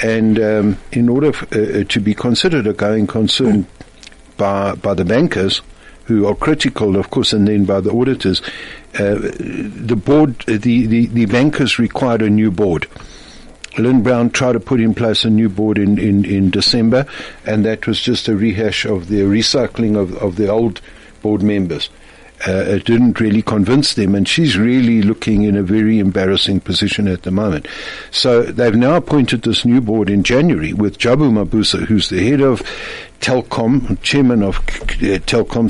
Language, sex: English, male